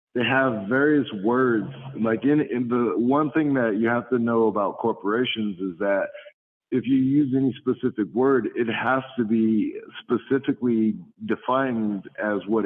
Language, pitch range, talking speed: English, 105-130 Hz, 155 wpm